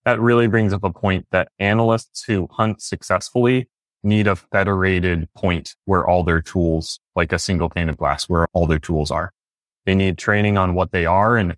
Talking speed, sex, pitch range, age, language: 195 wpm, male, 90-110 Hz, 20-39, English